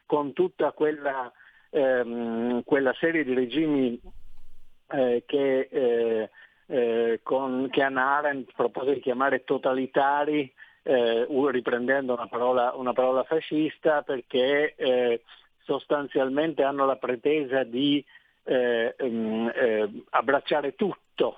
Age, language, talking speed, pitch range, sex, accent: 50-69, Italian, 105 wpm, 120-150 Hz, male, native